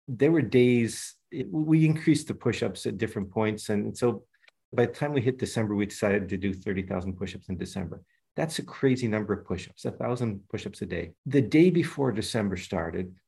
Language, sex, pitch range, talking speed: English, male, 95-130 Hz, 195 wpm